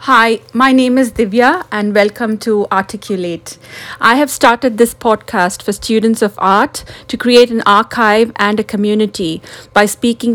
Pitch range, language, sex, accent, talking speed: 200-235 Hz, English, female, Indian, 155 wpm